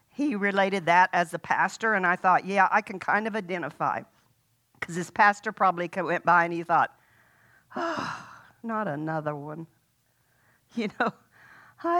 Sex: female